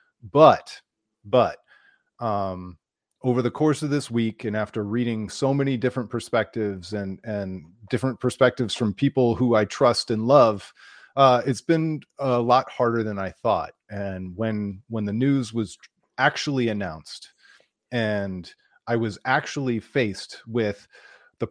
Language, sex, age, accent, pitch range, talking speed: English, male, 30-49, American, 105-125 Hz, 140 wpm